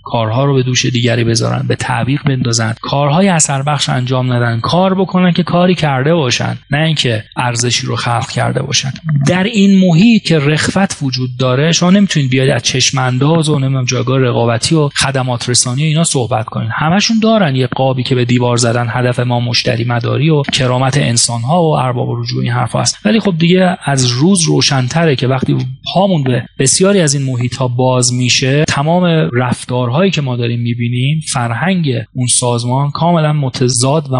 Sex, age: male, 30-49